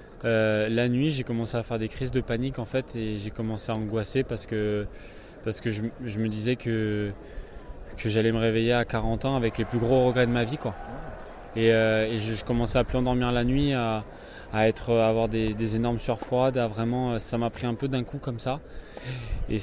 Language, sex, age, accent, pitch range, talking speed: French, male, 20-39, French, 110-125 Hz, 230 wpm